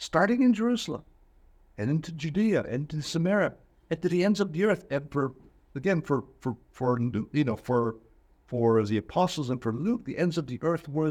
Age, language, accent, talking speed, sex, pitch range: 60-79, English, American, 200 wpm, male, 120-170 Hz